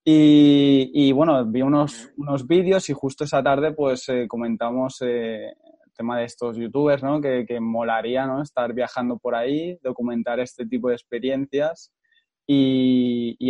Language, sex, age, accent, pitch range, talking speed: Spanish, male, 20-39, Spanish, 125-145 Hz, 160 wpm